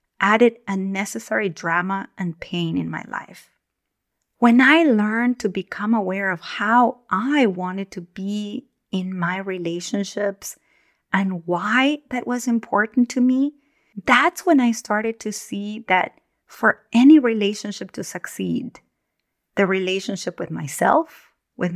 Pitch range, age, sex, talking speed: 195-250 Hz, 30-49, female, 130 wpm